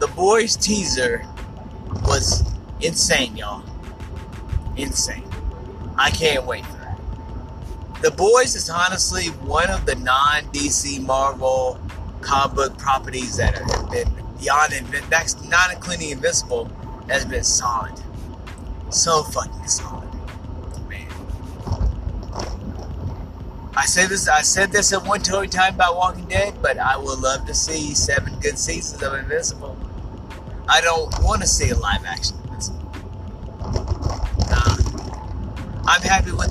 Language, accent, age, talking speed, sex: English, American, 30-49, 125 wpm, male